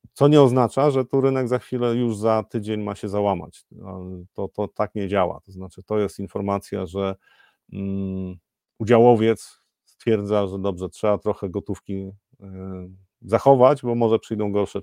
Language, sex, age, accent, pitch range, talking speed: Polish, male, 40-59, native, 95-115 Hz, 150 wpm